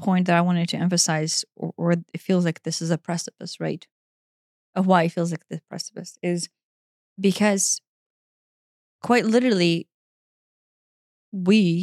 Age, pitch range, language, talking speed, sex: 20-39, 170-205 Hz, English, 140 wpm, female